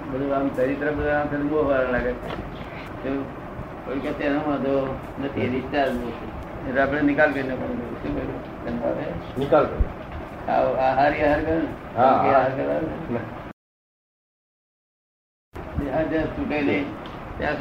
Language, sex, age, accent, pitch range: Gujarati, male, 60-79, native, 130-155 Hz